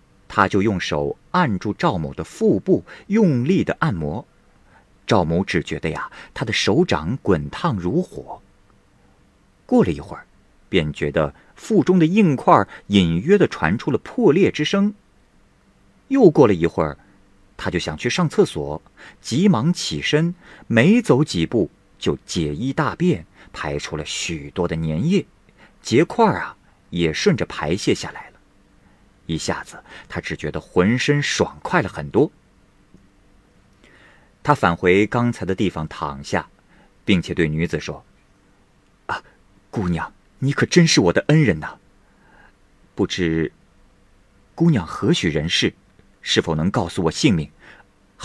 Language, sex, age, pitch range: Chinese, male, 50-69, 85-130 Hz